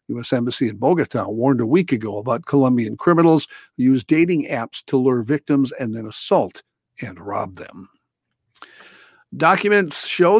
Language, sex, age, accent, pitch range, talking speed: English, male, 50-69, American, 125-165 Hz, 150 wpm